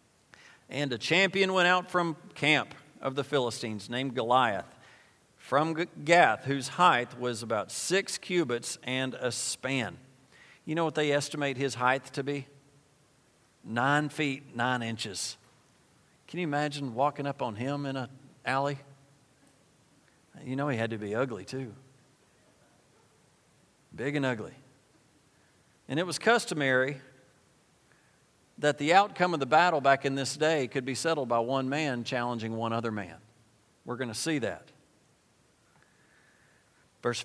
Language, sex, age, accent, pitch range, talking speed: English, male, 50-69, American, 115-145 Hz, 140 wpm